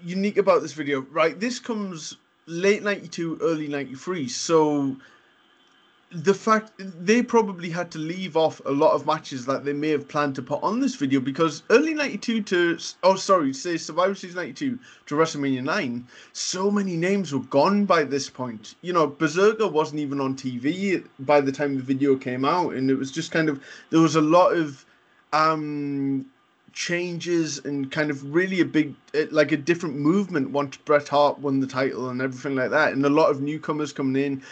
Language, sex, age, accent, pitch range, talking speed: English, male, 20-39, British, 140-185 Hz, 190 wpm